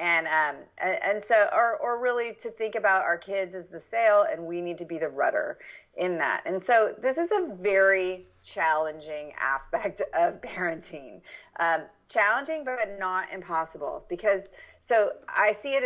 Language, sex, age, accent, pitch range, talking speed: English, female, 40-59, American, 170-220 Hz, 165 wpm